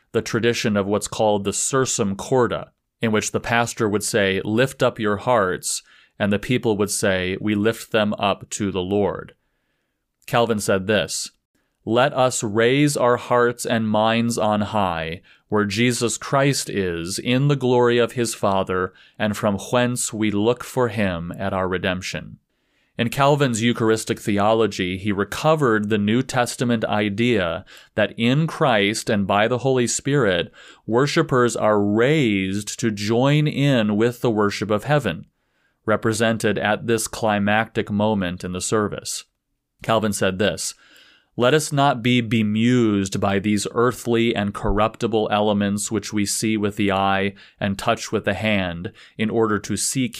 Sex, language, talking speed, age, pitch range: male, English, 155 wpm, 30-49, 100-120 Hz